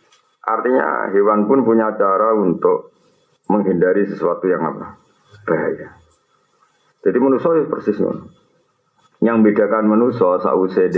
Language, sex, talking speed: Malay, male, 105 wpm